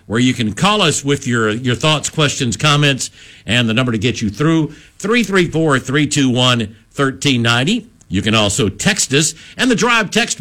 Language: English